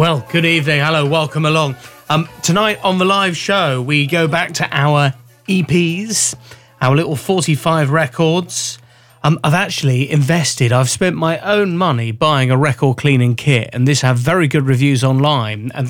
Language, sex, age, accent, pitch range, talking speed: English, male, 30-49, British, 125-170 Hz, 165 wpm